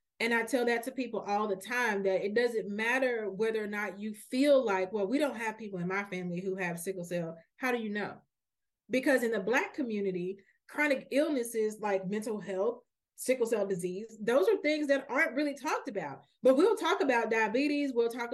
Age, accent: 30-49, American